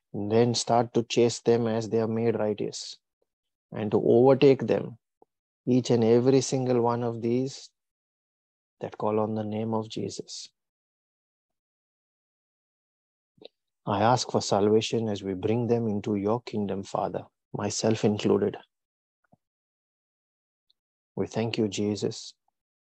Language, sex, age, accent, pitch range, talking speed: English, male, 30-49, Indian, 100-115 Hz, 125 wpm